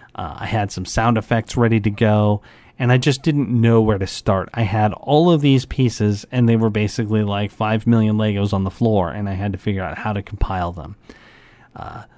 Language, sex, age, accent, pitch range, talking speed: English, male, 40-59, American, 105-125 Hz, 220 wpm